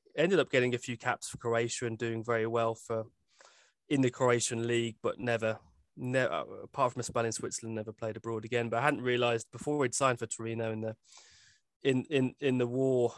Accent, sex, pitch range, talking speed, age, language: British, male, 110-125 Hz, 215 wpm, 20-39, English